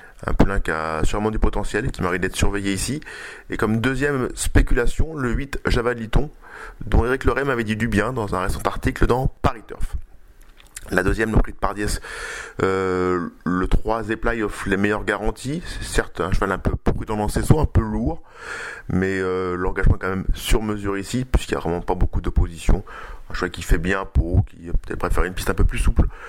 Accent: French